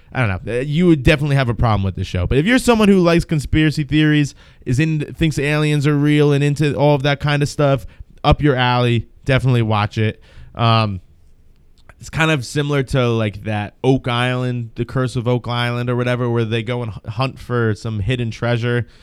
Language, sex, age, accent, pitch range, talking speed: English, male, 20-39, American, 115-145 Hz, 210 wpm